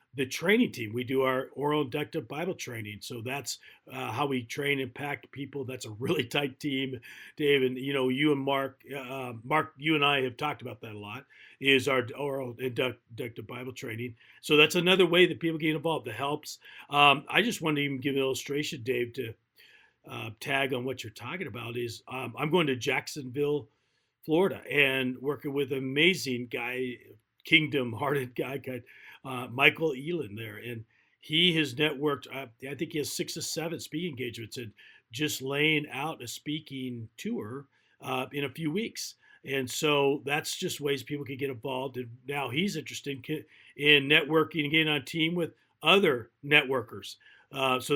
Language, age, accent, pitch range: English, 50-69, American, 130-155 Hz